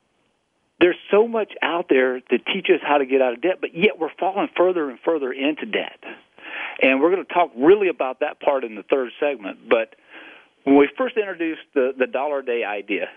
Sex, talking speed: male, 210 wpm